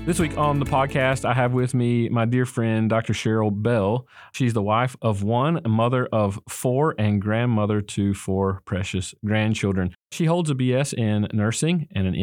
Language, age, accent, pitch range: English, 40-59, American, 100-125 Hz